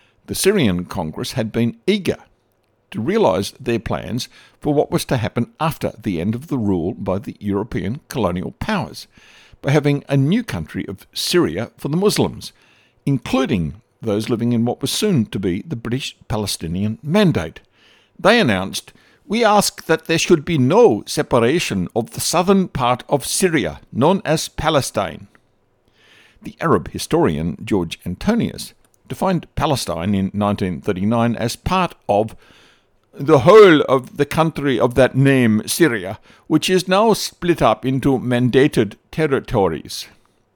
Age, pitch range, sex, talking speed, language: 60-79, 110-155 Hz, male, 140 wpm, English